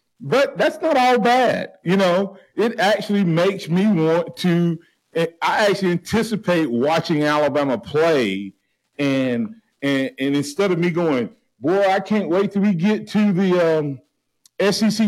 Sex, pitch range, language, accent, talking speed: male, 140-225 Hz, English, American, 145 wpm